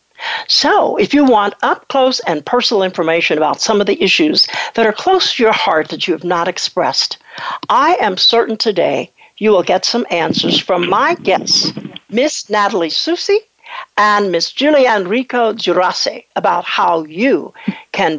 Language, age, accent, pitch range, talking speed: English, 60-79, American, 175-290 Hz, 160 wpm